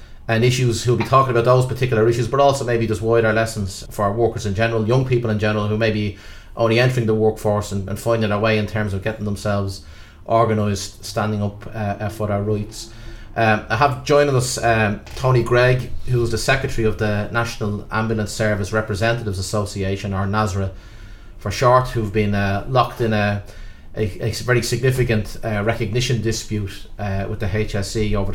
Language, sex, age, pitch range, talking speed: English, male, 30-49, 105-115 Hz, 185 wpm